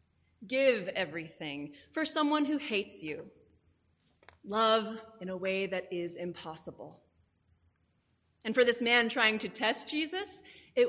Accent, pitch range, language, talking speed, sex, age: American, 165-230 Hz, English, 125 wpm, female, 30-49